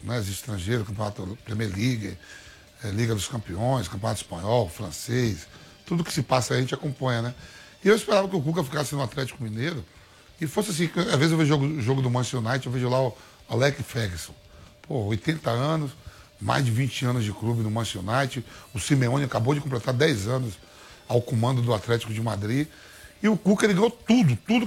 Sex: male